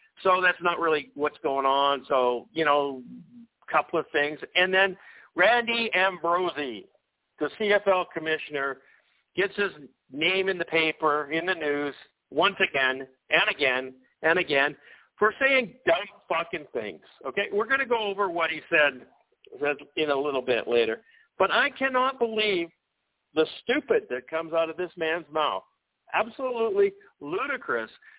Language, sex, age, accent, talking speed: English, male, 50-69, American, 150 wpm